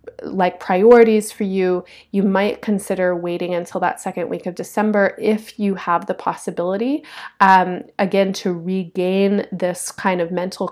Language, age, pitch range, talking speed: English, 30-49, 180-200 Hz, 150 wpm